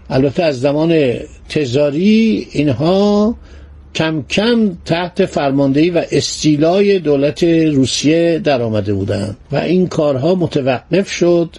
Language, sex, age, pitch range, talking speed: Persian, male, 60-79, 130-180 Hz, 110 wpm